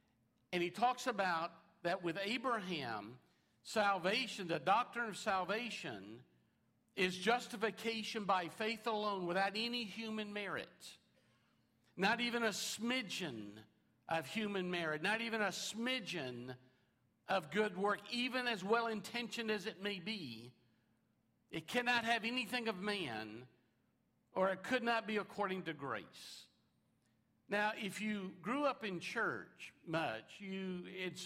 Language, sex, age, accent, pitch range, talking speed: English, male, 60-79, American, 160-215 Hz, 125 wpm